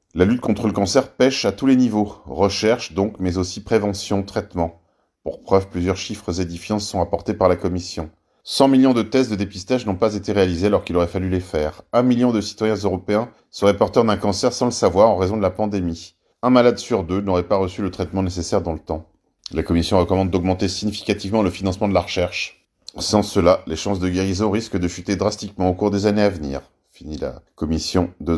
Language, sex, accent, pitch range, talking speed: French, male, French, 85-105 Hz, 215 wpm